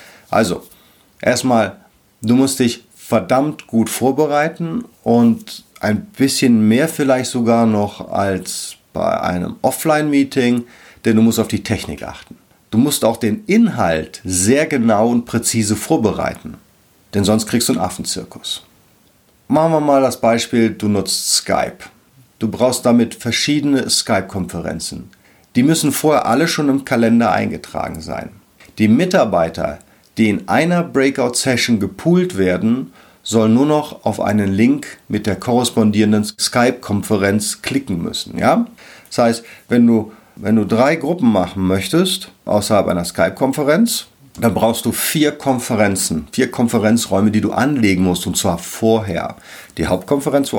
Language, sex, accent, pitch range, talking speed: German, male, German, 105-135 Hz, 135 wpm